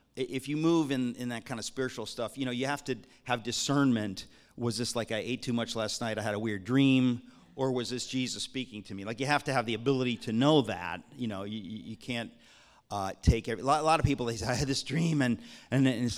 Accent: American